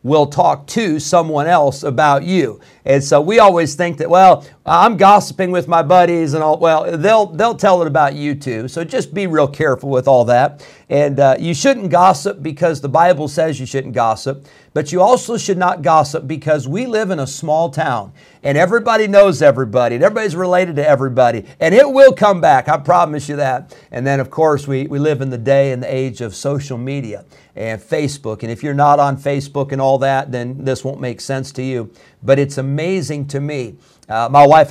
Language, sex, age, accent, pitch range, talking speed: English, male, 50-69, American, 135-160 Hz, 210 wpm